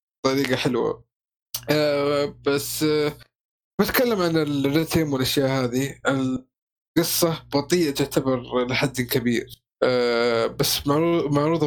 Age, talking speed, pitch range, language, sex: 20-39, 95 wpm, 135-165 Hz, Arabic, male